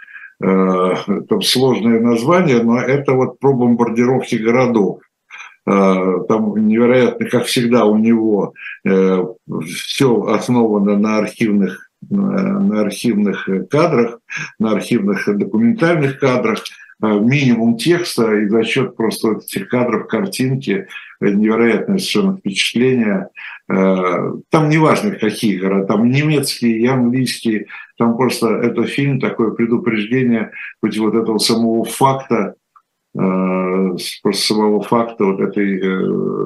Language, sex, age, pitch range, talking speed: Russian, male, 60-79, 105-130 Hz, 100 wpm